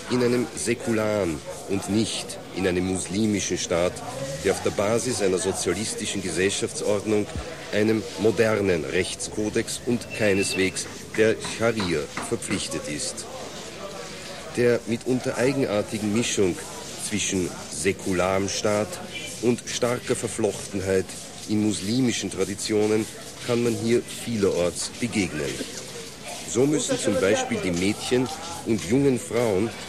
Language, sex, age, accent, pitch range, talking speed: English, male, 50-69, German, 95-115 Hz, 105 wpm